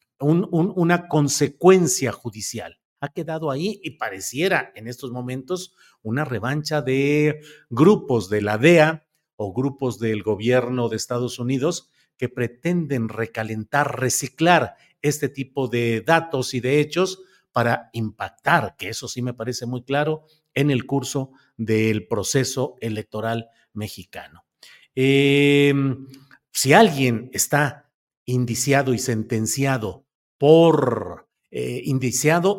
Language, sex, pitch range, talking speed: Spanish, male, 120-155 Hz, 120 wpm